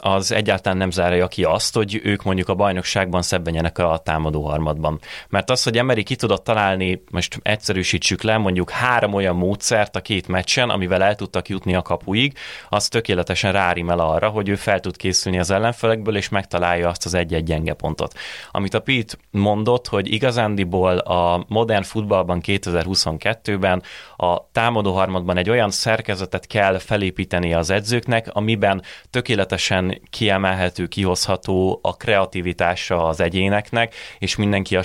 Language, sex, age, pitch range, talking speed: Hungarian, male, 30-49, 90-105 Hz, 150 wpm